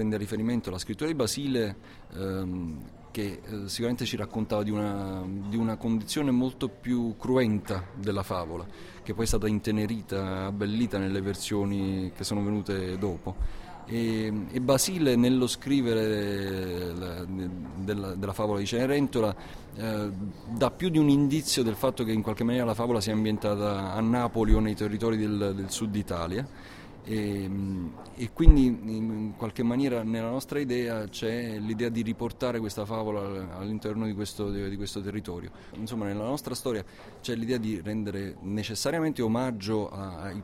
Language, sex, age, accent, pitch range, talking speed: Italian, male, 30-49, native, 100-115 Hz, 150 wpm